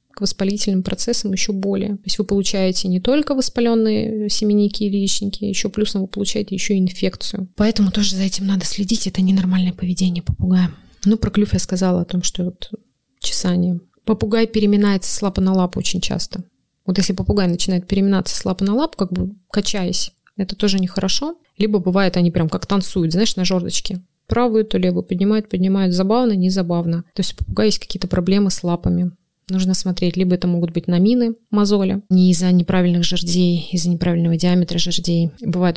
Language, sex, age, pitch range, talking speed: Russian, female, 20-39, 175-200 Hz, 175 wpm